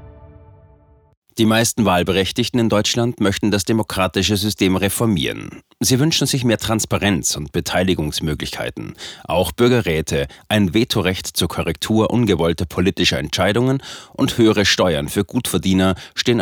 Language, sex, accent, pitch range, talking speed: German, male, German, 90-110 Hz, 115 wpm